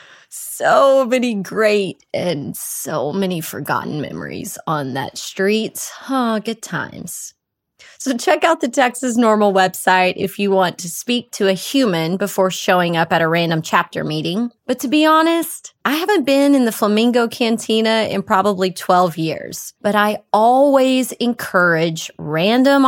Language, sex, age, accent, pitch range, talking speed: English, female, 30-49, American, 185-240 Hz, 150 wpm